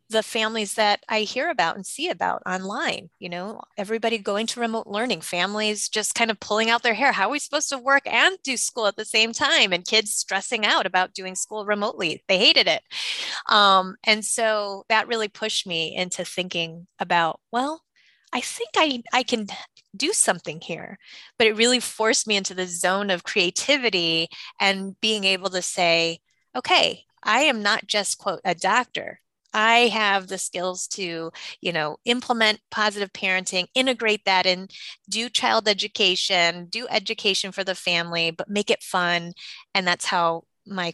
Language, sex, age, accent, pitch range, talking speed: English, female, 20-39, American, 180-225 Hz, 175 wpm